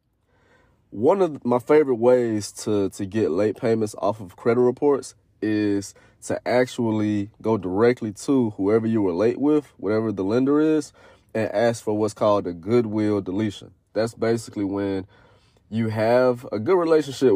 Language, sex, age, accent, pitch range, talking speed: English, male, 30-49, American, 95-115 Hz, 155 wpm